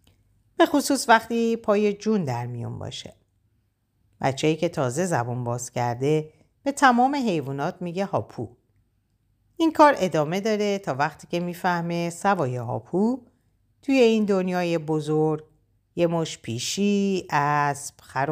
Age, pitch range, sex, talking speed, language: 50-69, 120-200 Hz, female, 120 wpm, Persian